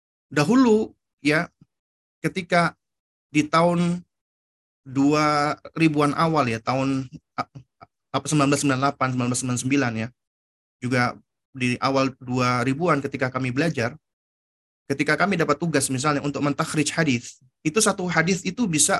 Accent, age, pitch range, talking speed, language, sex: native, 30-49, 125-170 Hz, 105 wpm, Indonesian, male